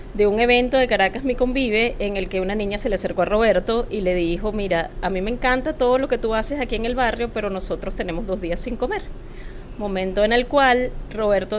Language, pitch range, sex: English, 190-240 Hz, female